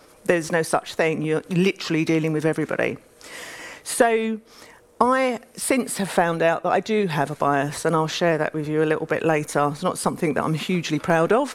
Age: 40-59